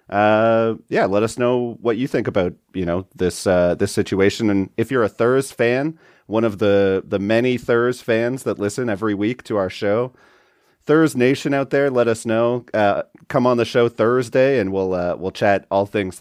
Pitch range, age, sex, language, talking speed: 95-125 Hz, 30-49, male, English, 205 wpm